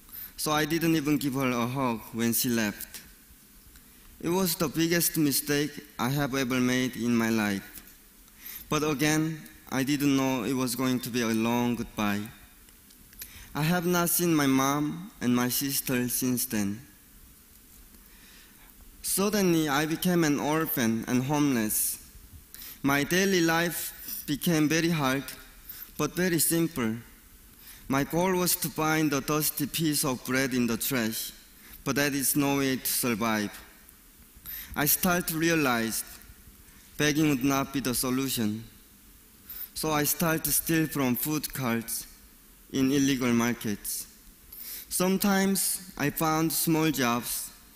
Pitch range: 120-155 Hz